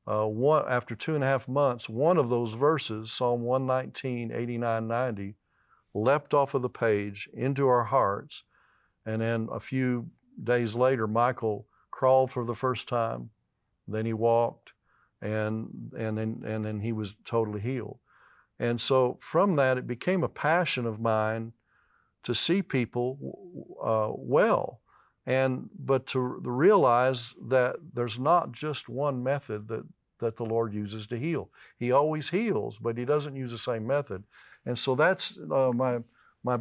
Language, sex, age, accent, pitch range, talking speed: English, male, 40-59, American, 115-135 Hz, 160 wpm